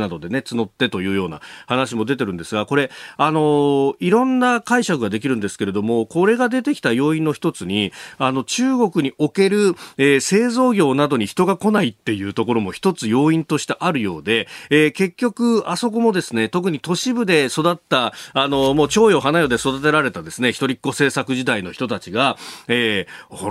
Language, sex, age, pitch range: Japanese, male, 40-59, 125-195 Hz